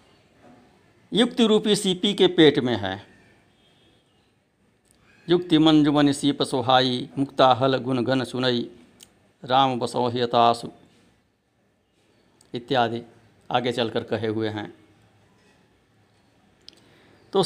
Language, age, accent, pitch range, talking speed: Hindi, 60-79, native, 105-160 Hz, 85 wpm